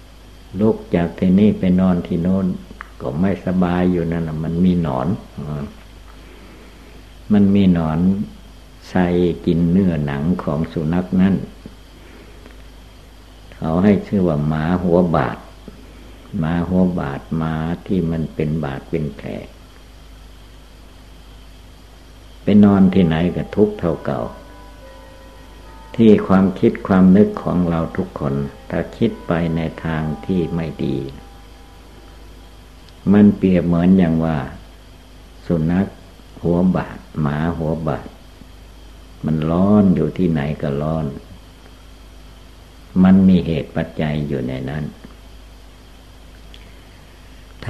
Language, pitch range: Thai, 85-90 Hz